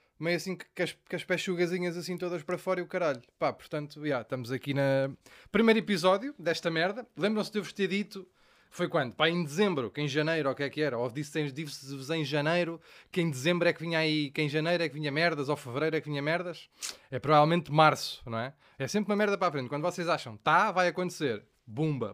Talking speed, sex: 245 wpm, male